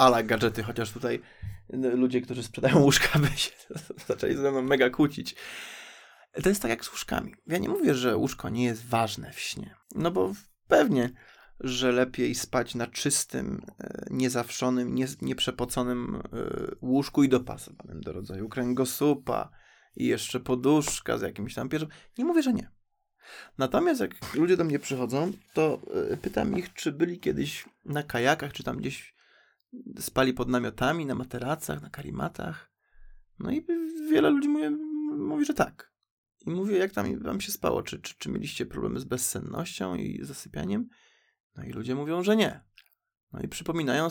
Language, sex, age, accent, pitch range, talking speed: Polish, male, 20-39, native, 125-190 Hz, 155 wpm